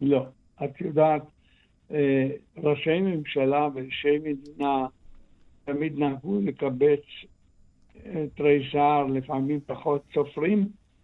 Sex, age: male, 60-79